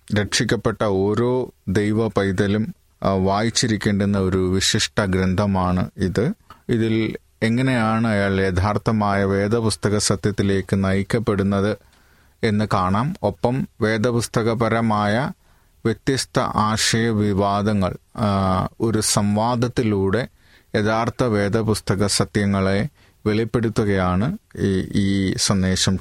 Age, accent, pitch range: 30-49, native, 95-115 Hz